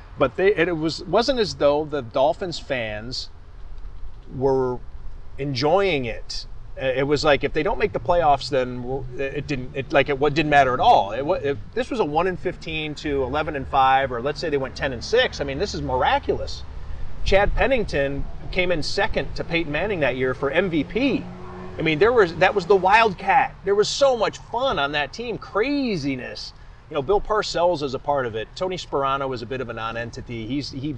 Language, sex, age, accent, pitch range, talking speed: English, male, 30-49, American, 120-160 Hz, 200 wpm